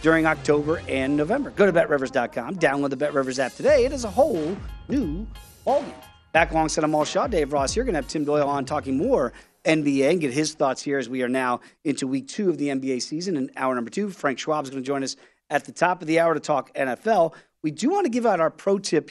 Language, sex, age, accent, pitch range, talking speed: English, male, 40-59, American, 140-190 Hz, 260 wpm